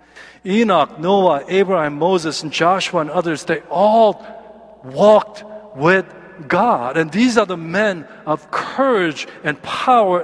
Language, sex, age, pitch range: Korean, male, 50-69, 160-215 Hz